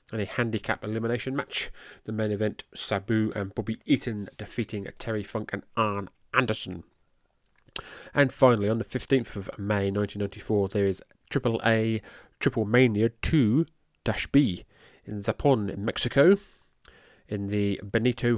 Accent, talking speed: British, 130 wpm